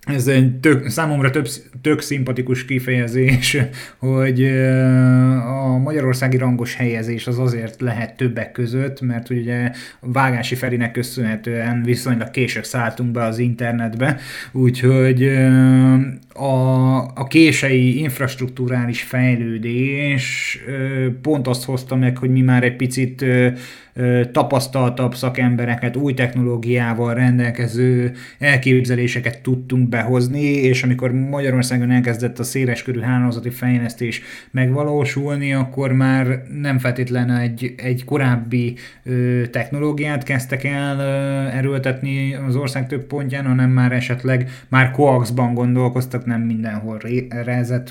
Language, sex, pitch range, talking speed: Hungarian, male, 120-130 Hz, 110 wpm